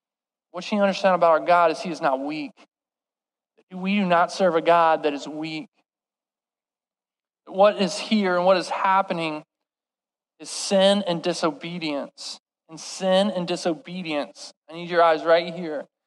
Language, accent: English, American